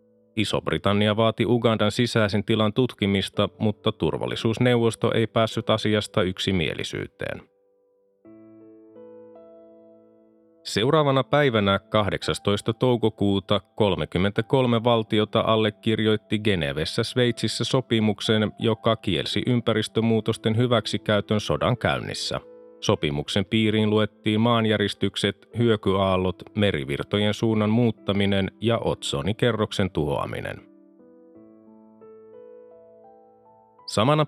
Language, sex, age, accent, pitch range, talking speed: Finnish, male, 30-49, native, 100-120 Hz, 70 wpm